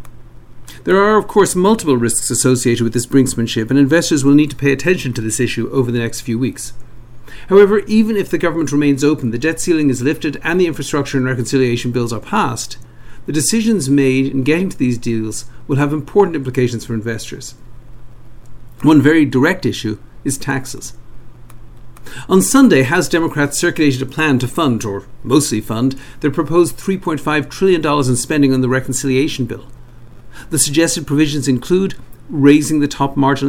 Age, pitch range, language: 50-69, 120-150 Hz, English